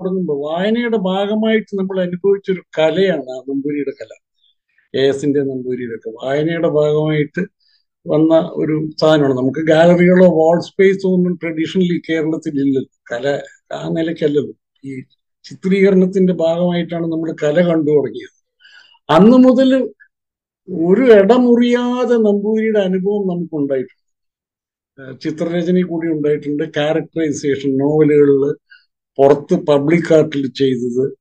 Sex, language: male, Malayalam